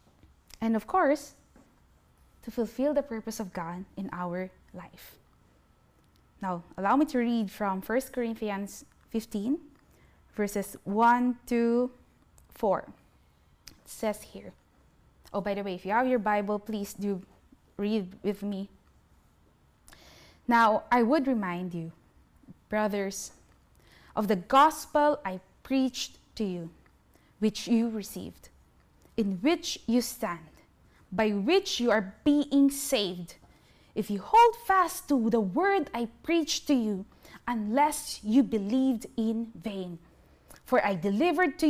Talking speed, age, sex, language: 125 wpm, 20-39, female, English